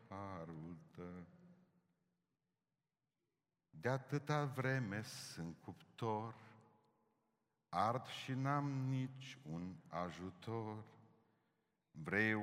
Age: 50-69